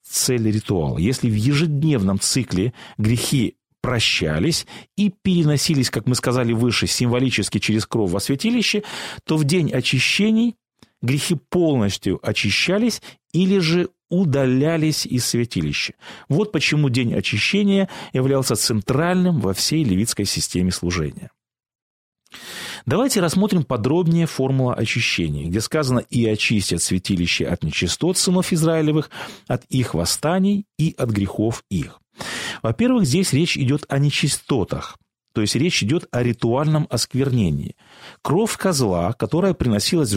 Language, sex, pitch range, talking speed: Russian, male, 110-170 Hz, 120 wpm